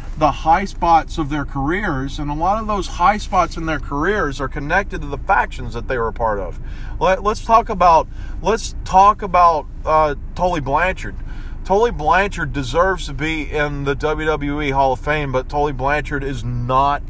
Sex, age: male, 30-49